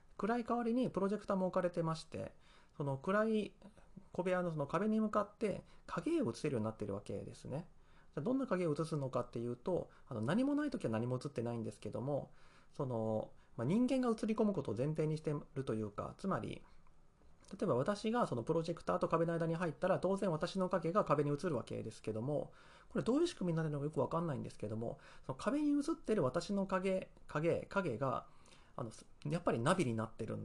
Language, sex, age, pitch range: Japanese, male, 30-49, 120-195 Hz